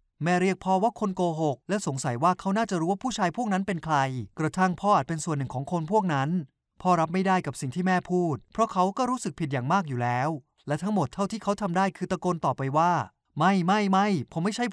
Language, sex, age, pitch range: Thai, male, 20-39, 145-195 Hz